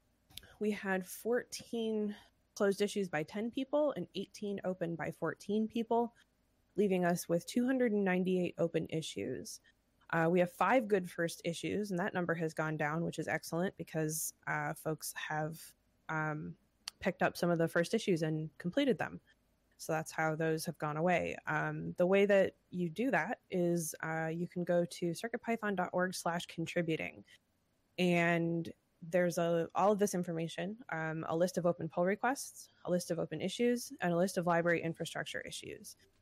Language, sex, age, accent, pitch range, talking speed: English, female, 20-39, American, 165-200 Hz, 165 wpm